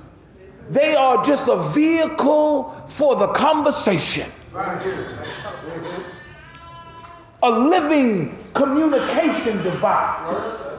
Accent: American